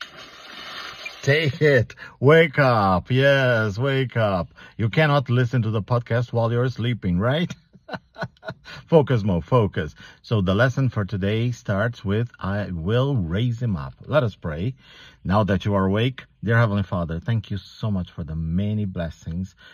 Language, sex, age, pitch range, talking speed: English, male, 50-69, 95-125 Hz, 155 wpm